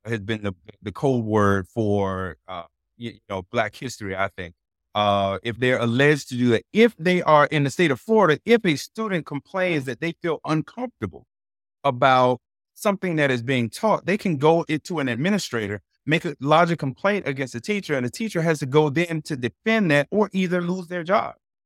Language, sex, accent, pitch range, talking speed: English, male, American, 115-165 Hz, 195 wpm